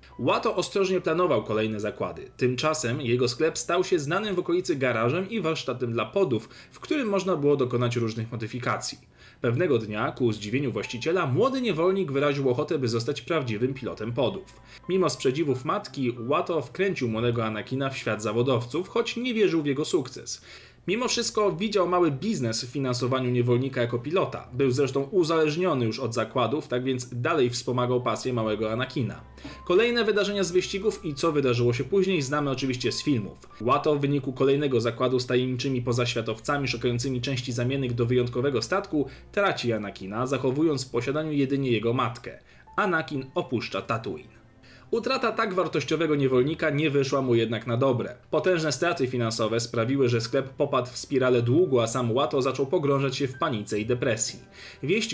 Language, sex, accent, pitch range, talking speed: Polish, male, native, 120-170 Hz, 160 wpm